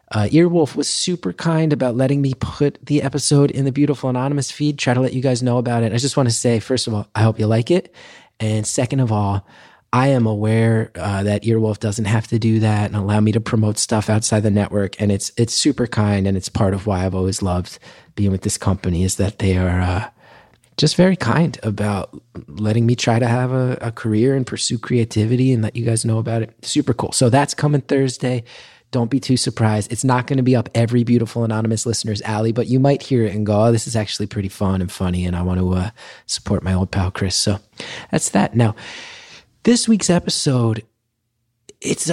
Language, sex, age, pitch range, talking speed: English, male, 30-49, 105-140 Hz, 225 wpm